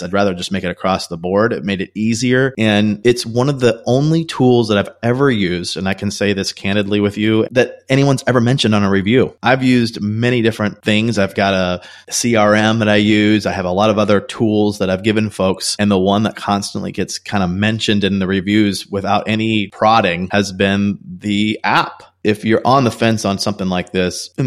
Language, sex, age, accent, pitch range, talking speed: English, male, 30-49, American, 95-110 Hz, 220 wpm